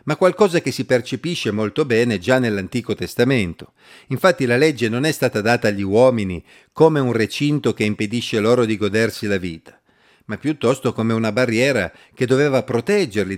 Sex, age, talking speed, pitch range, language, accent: male, 50-69, 165 wpm, 105-145 Hz, Italian, native